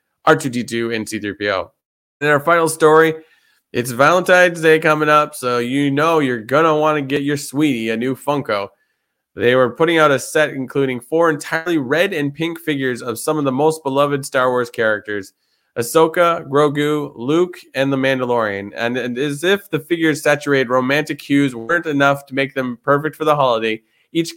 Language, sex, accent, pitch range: English, male, American, 125-155 Hz